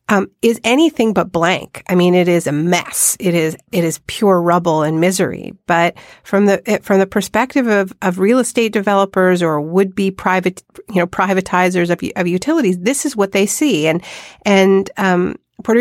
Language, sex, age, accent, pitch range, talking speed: English, female, 40-59, American, 175-210 Hz, 180 wpm